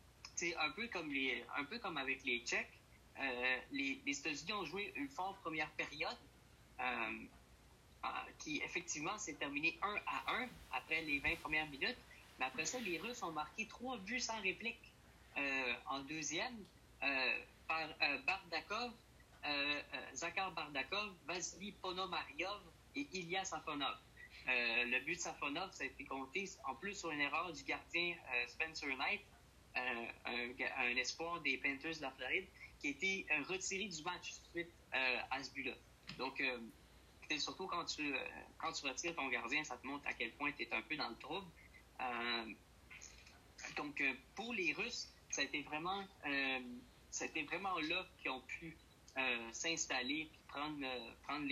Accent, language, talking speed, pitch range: Canadian, French, 170 wpm, 130-180 Hz